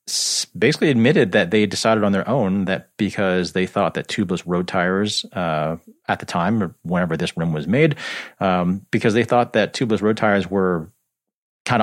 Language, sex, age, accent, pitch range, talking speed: English, male, 30-49, American, 100-135 Hz, 180 wpm